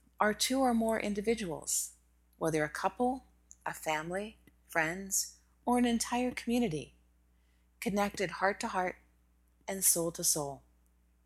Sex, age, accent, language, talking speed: female, 40-59, American, English, 125 wpm